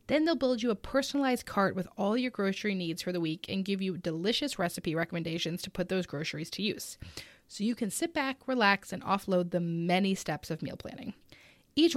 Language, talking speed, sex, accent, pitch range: English, 210 wpm, female, American, 185-270 Hz